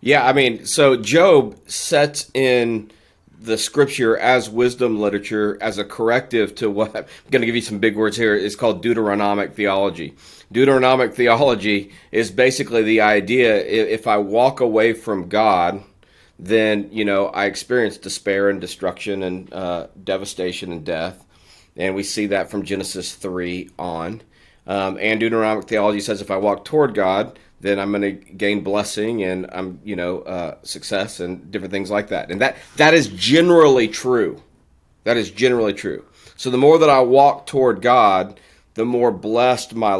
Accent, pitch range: American, 95-120 Hz